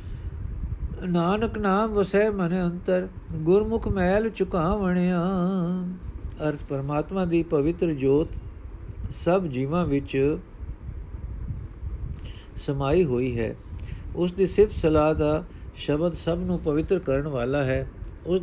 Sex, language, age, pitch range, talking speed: male, Punjabi, 50-69, 115-170 Hz, 100 wpm